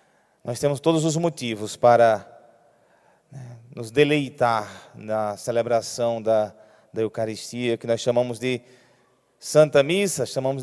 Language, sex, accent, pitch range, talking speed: Portuguese, male, Brazilian, 120-155 Hz, 115 wpm